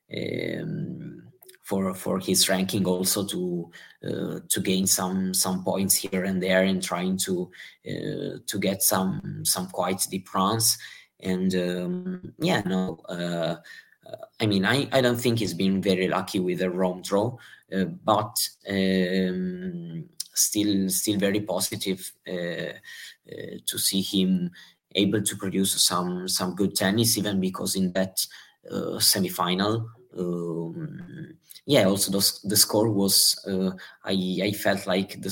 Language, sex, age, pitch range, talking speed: English, male, 20-39, 95-100 Hz, 145 wpm